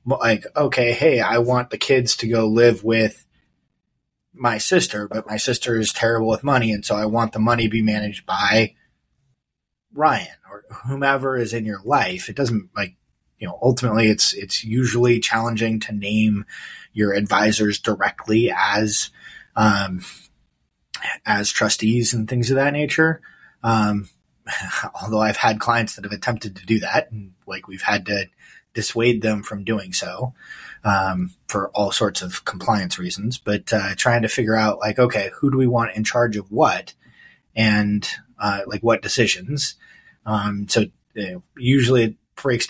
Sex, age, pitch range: male, 20-39, 105-120 Hz